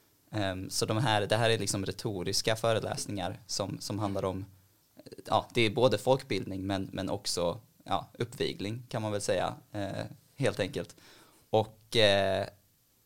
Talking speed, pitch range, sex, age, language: 125 wpm, 95-115 Hz, male, 20-39, Swedish